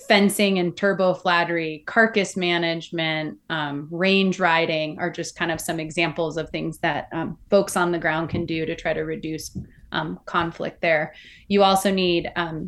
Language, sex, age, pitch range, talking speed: English, female, 20-39, 165-185 Hz, 170 wpm